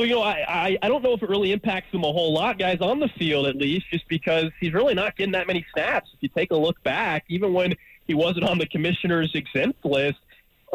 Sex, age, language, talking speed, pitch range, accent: male, 20-39, English, 255 wpm, 140-180 Hz, American